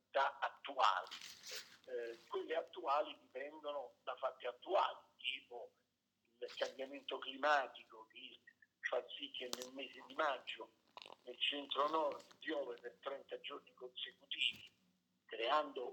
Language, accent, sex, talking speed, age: Italian, native, male, 115 wpm, 50-69